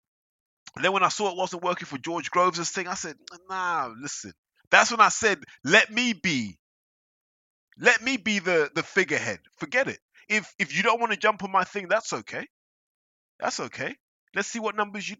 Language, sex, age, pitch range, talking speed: English, male, 20-39, 130-195 Hz, 195 wpm